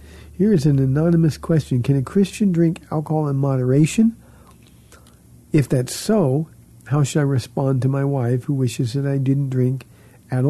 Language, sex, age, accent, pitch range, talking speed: English, male, 50-69, American, 125-160 Hz, 165 wpm